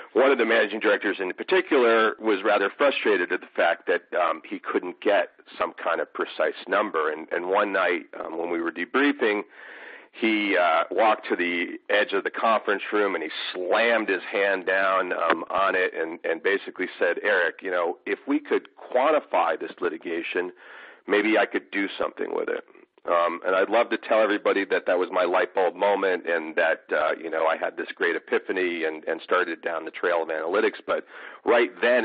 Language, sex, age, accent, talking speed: English, male, 40-59, American, 200 wpm